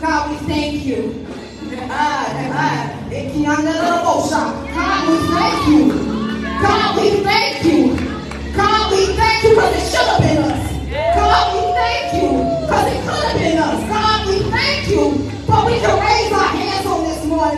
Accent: American